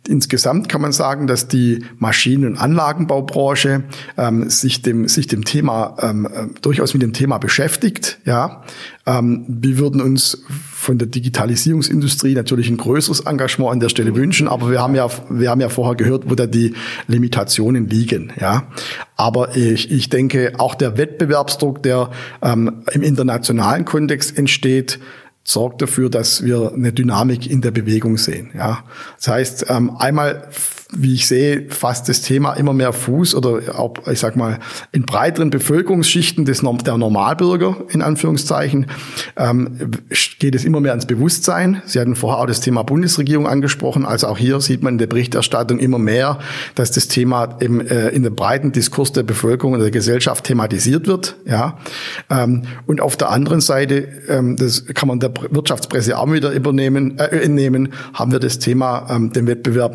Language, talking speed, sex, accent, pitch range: German, 170 wpm, male, German, 120-140 Hz